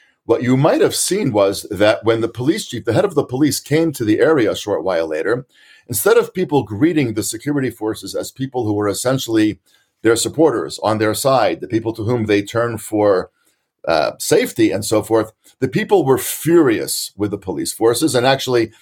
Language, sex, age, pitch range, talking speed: English, male, 50-69, 110-140 Hz, 200 wpm